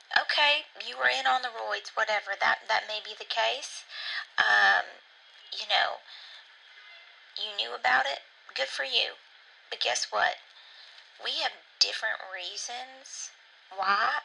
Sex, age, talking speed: female, 30-49, 135 wpm